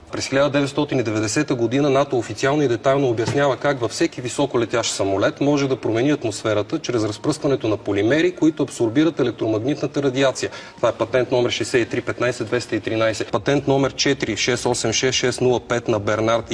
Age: 30-49